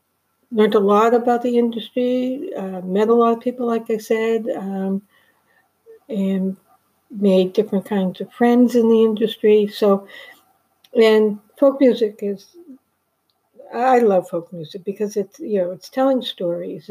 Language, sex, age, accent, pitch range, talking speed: English, female, 60-79, American, 190-240 Hz, 140 wpm